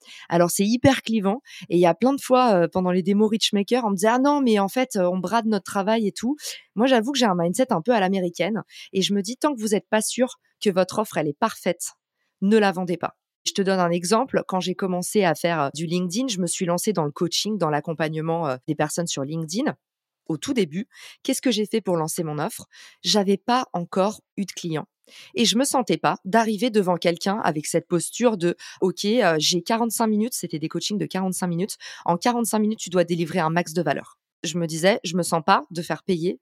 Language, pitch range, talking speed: French, 175-220 Hz, 250 wpm